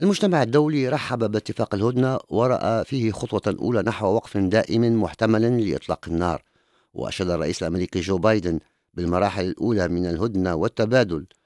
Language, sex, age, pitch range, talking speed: English, male, 50-69, 90-125 Hz, 130 wpm